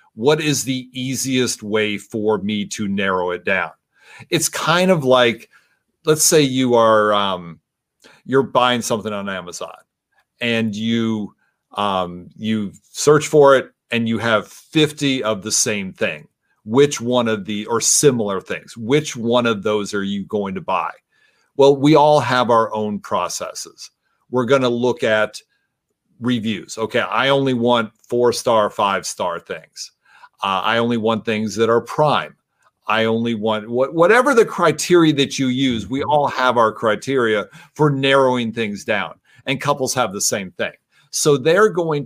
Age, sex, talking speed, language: 40-59, male, 160 wpm, English